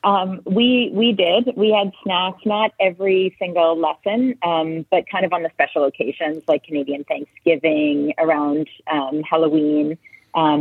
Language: English